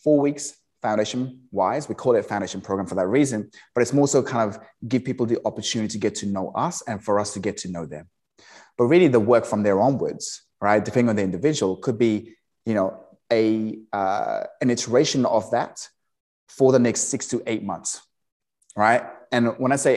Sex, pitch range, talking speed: male, 100-125 Hz, 205 wpm